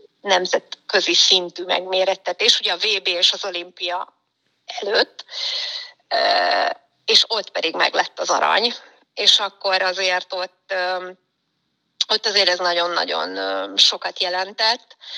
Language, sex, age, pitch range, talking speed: Hungarian, female, 30-49, 180-210 Hz, 105 wpm